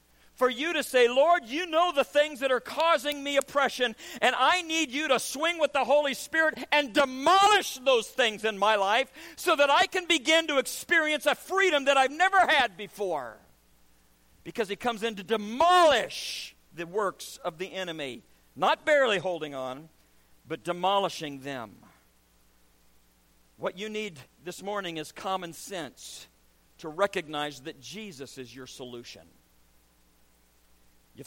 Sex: male